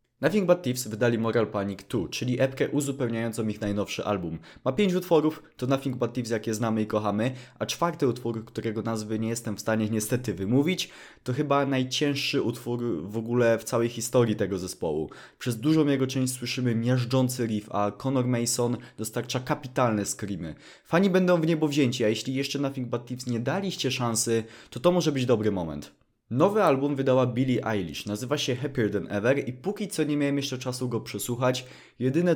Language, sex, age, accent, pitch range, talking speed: Polish, male, 20-39, native, 110-140 Hz, 185 wpm